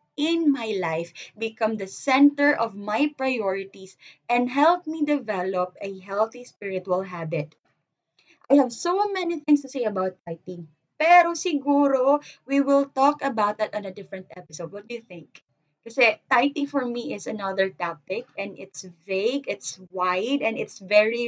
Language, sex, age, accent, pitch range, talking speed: Filipino, female, 20-39, native, 185-250 Hz, 160 wpm